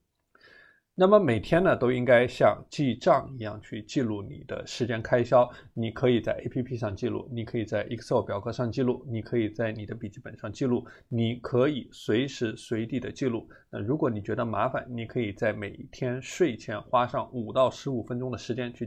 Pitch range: 110-135 Hz